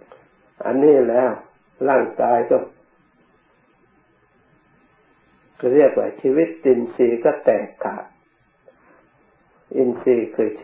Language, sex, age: Thai, male, 60-79